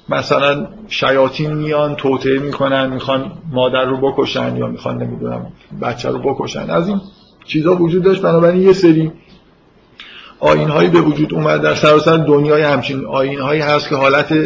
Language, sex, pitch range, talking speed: Persian, male, 130-150 Hz, 150 wpm